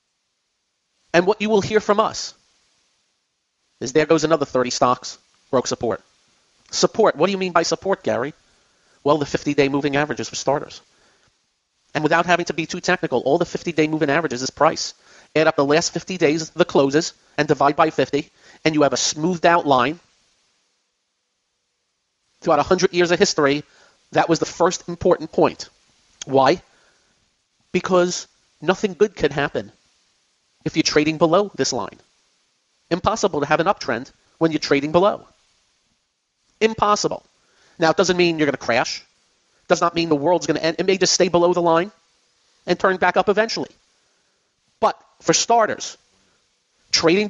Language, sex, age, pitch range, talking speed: English, male, 30-49, 155-180 Hz, 165 wpm